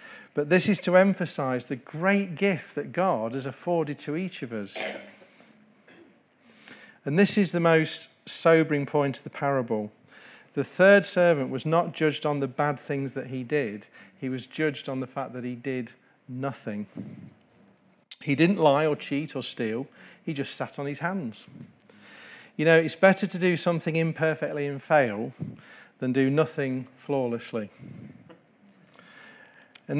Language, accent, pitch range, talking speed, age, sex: English, British, 130-165 Hz, 155 wpm, 40-59, male